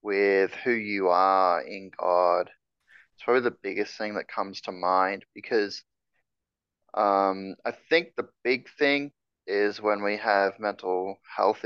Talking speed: 145 wpm